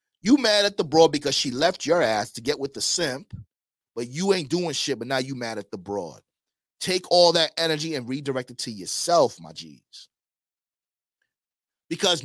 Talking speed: 190 wpm